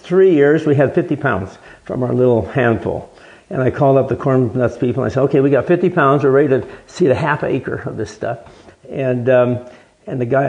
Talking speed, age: 235 wpm, 50-69